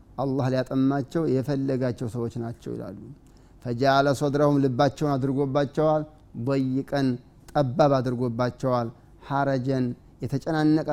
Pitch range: 125-140 Hz